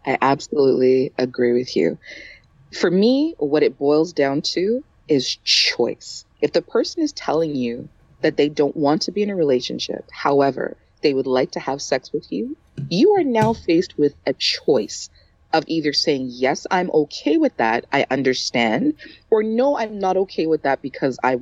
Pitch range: 140-195 Hz